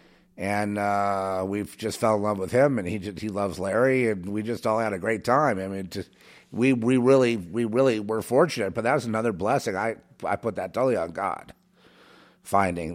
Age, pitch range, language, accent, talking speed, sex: 50-69, 100-125 Hz, English, American, 215 wpm, male